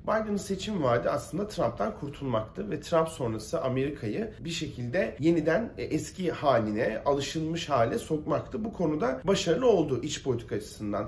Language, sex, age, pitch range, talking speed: Turkish, male, 40-59, 130-165 Hz, 135 wpm